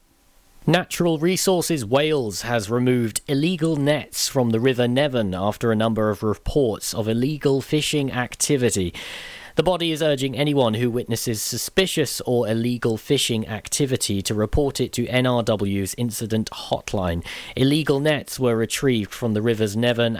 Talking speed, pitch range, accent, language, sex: 140 wpm, 110-130 Hz, British, English, male